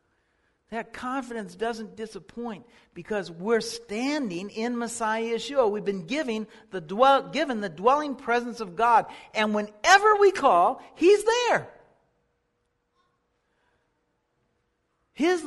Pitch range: 225-330 Hz